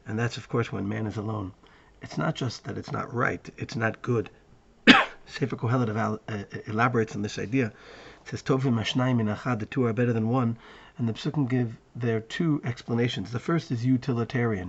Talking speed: 190 wpm